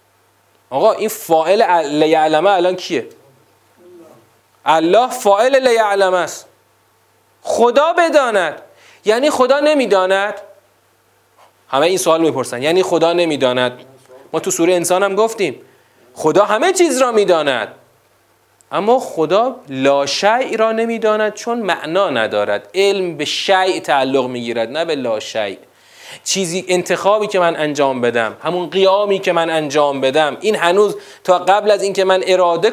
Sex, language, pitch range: male, Persian, 160-250 Hz